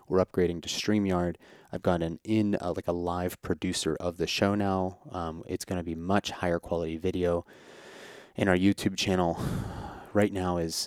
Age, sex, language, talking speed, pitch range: 30-49, male, English, 180 wpm, 85-95 Hz